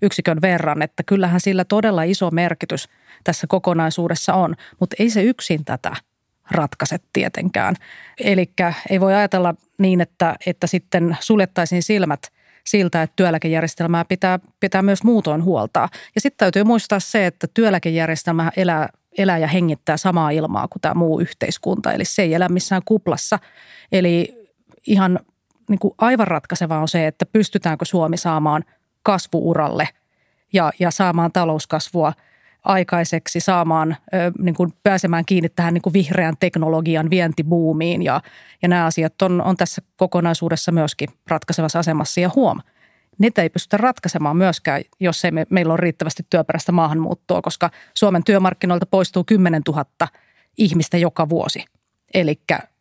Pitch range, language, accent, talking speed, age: 165-190 Hz, Finnish, native, 140 wpm, 30-49